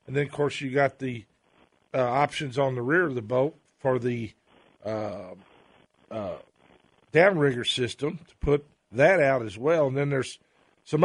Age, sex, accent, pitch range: 50-69, male, American, 130-165 Hz